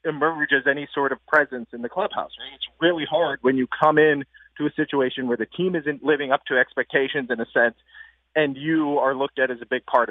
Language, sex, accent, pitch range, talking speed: English, male, American, 130-155 Hz, 230 wpm